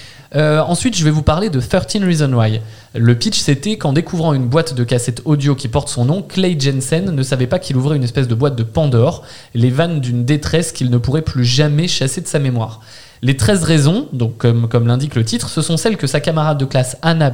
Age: 20-39